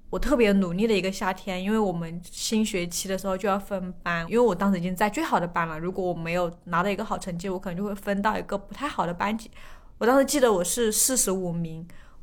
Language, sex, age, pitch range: Chinese, female, 20-39, 185-245 Hz